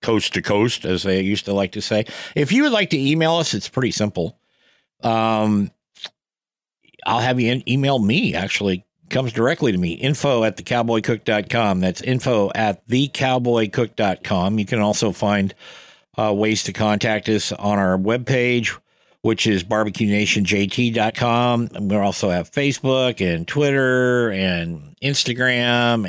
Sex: male